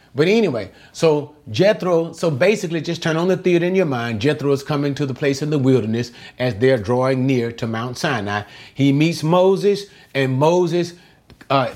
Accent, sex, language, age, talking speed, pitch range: American, male, English, 40-59, 185 wpm, 120-155 Hz